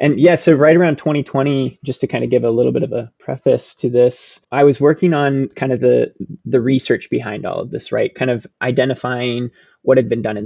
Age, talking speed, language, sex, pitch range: 20-39, 235 wpm, English, male, 115-145 Hz